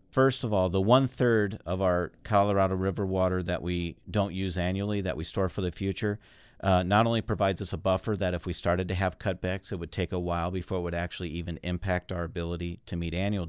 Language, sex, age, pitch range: English, male, 50-69, 85-100 Hz